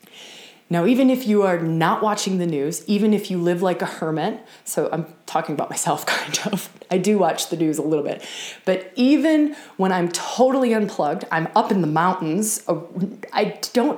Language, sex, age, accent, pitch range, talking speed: English, female, 20-39, American, 175-225 Hz, 190 wpm